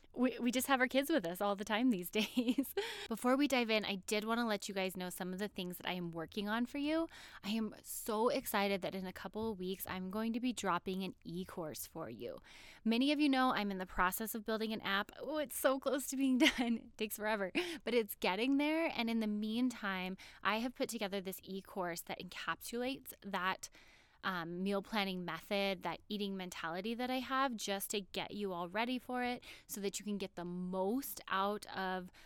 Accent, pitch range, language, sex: American, 190-245 Hz, English, female